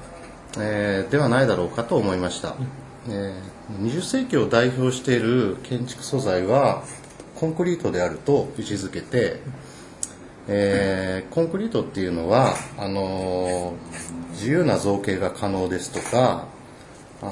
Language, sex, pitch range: Japanese, male, 95-145 Hz